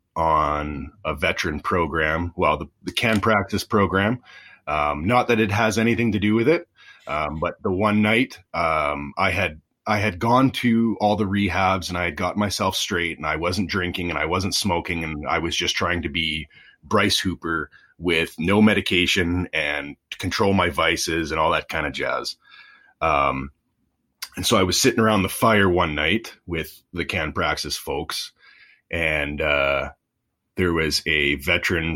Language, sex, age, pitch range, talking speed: English, male, 30-49, 85-115 Hz, 175 wpm